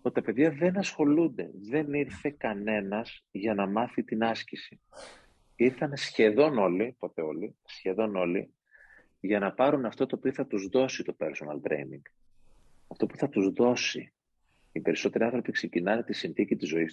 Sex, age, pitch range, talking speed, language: male, 40-59, 105-135 Hz, 160 wpm, Greek